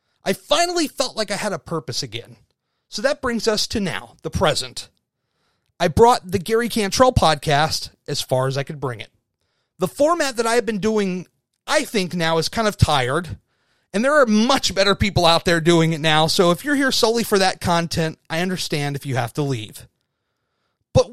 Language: English